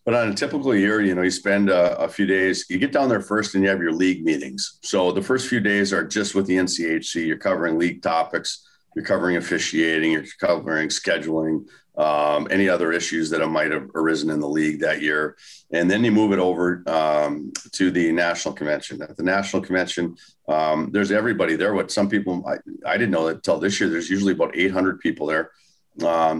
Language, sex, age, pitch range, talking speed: English, male, 40-59, 80-95 Hz, 215 wpm